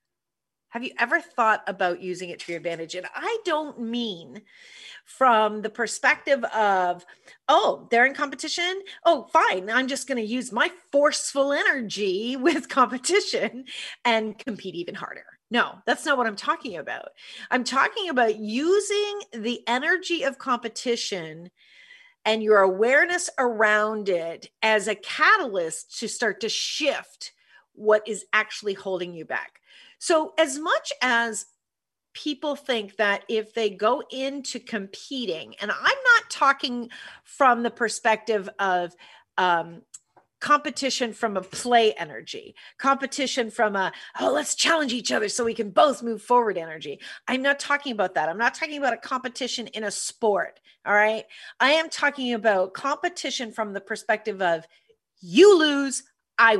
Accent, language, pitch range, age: American, English, 215-290 Hz, 40-59